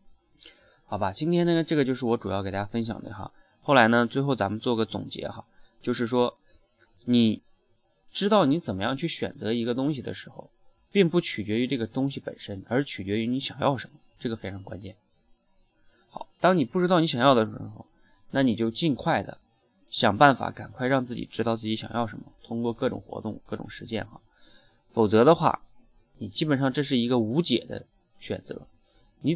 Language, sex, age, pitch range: Chinese, male, 20-39, 105-135 Hz